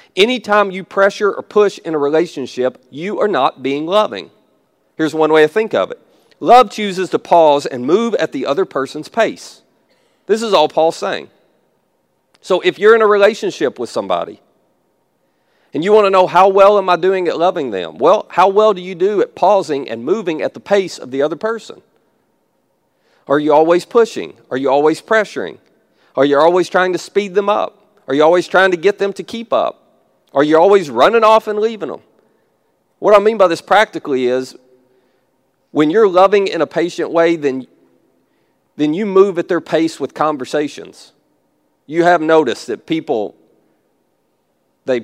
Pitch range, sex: 150-205 Hz, male